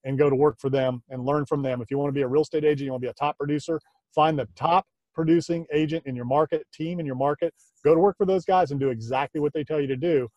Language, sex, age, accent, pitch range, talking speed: English, male, 30-49, American, 135-160 Hz, 295 wpm